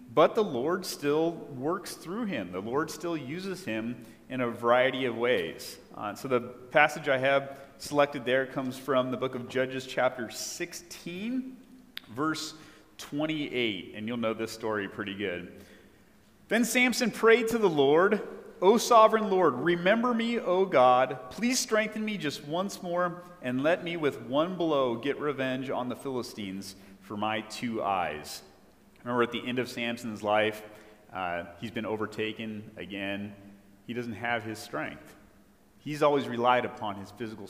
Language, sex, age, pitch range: English, male, 30-49, 100-140 Hz